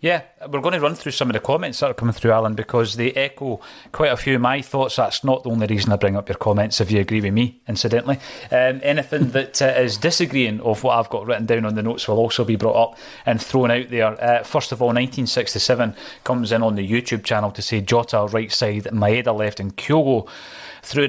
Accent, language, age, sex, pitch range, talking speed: British, English, 30-49, male, 110-130 Hz, 240 wpm